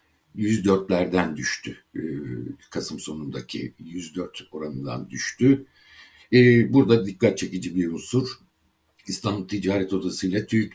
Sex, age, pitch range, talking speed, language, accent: male, 60-79, 90-110 Hz, 105 wpm, Turkish, native